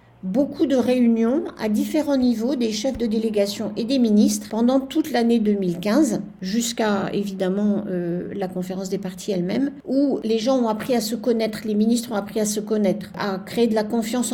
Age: 50-69